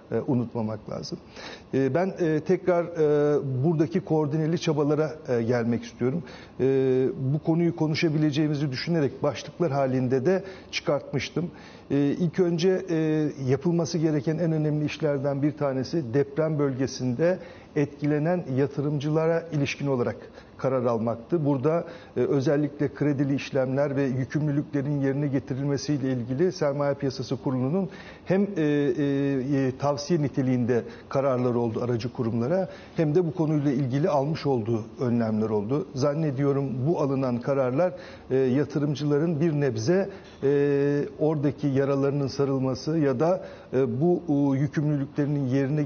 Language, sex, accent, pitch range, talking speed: Turkish, male, native, 135-155 Hz, 110 wpm